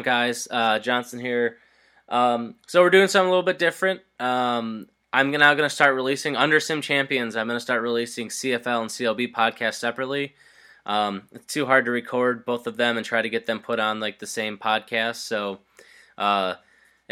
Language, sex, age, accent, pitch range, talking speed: English, male, 20-39, American, 115-140 Hz, 185 wpm